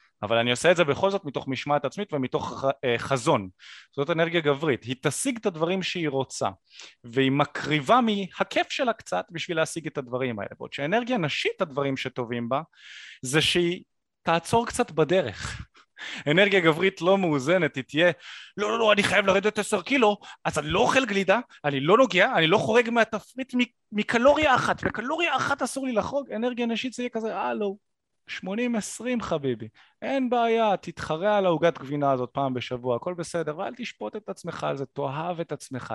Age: 30-49